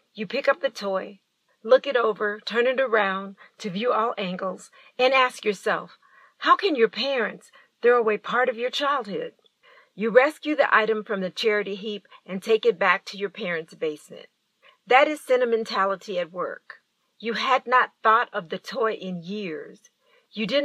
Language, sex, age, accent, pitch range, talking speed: English, female, 40-59, American, 195-250 Hz, 175 wpm